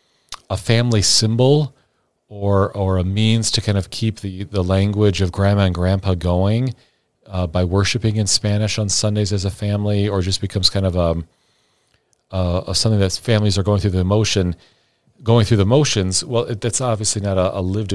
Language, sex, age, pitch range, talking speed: English, male, 40-59, 95-110 Hz, 190 wpm